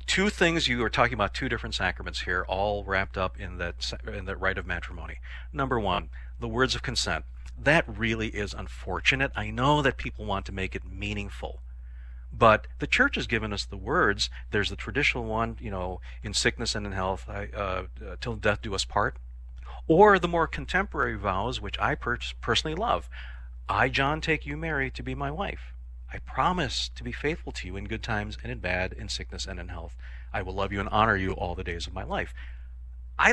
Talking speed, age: 205 wpm, 40-59